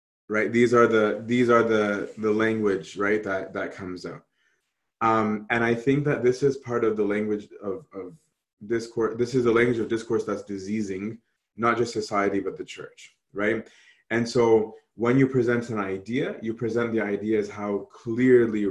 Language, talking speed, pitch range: English, 185 wpm, 105-120 Hz